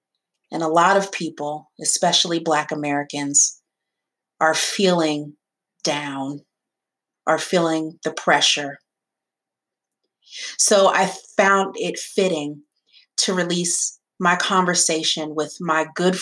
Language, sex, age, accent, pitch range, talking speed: English, female, 30-49, American, 155-185 Hz, 100 wpm